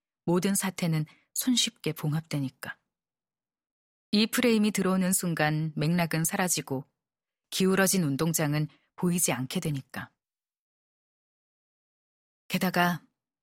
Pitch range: 150-190 Hz